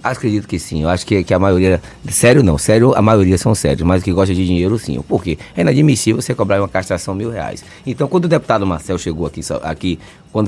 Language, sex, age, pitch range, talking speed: Portuguese, male, 20-39, 100-150 Hz, 235 wpm